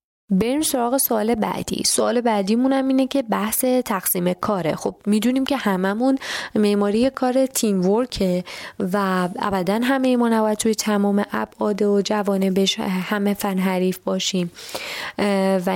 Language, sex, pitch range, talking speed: Persian, female, 185-245 Hz, 130 wpm